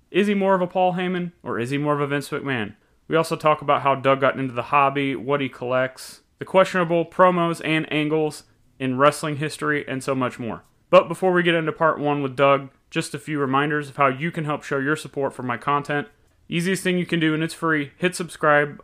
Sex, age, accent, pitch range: male, 30-49, American, 130-160 Hz